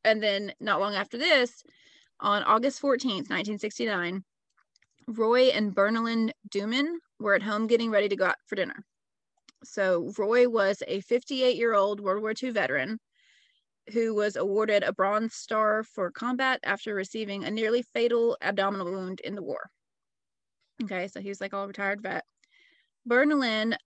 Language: English